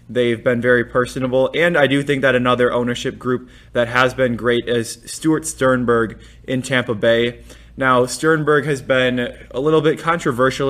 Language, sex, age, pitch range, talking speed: English, male, 20-39, 115-130 Hz, 170 wpm